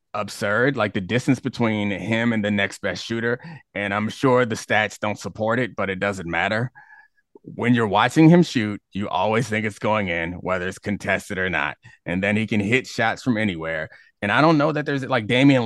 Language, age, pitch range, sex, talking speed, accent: English, 30-49, 100-125 Hz, male, 210 wpm, American